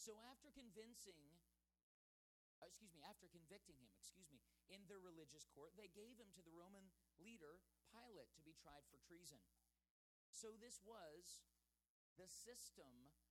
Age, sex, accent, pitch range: 40-59, male, American, 150-220 Hz